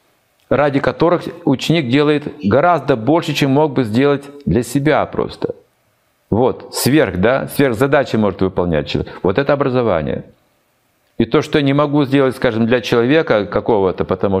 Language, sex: Russian, male